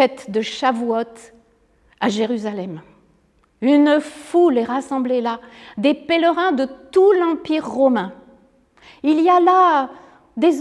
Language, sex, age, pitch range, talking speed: French, female, 50-69, 235-315 Hz, 115 wpm